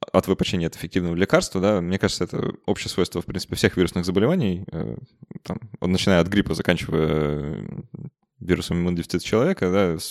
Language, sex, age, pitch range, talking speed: Russian, male, 20-39, 85-95 Hz, 155 wpm